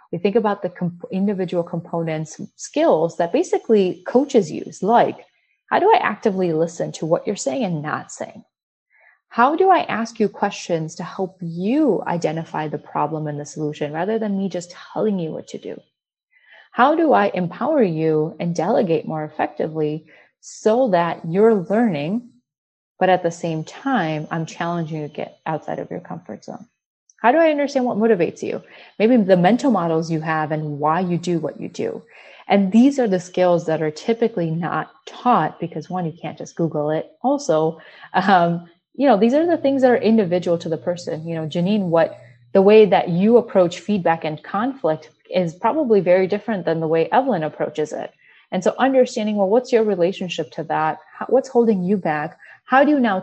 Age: 30-49